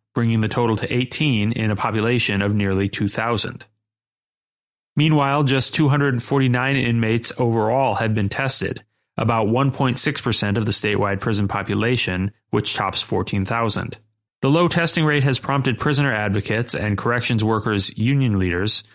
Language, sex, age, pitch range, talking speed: English, male, 30-49, 105-130 Hz, 135 wpm